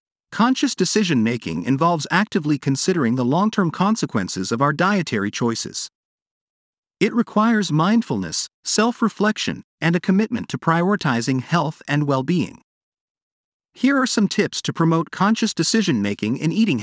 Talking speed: 120 wpm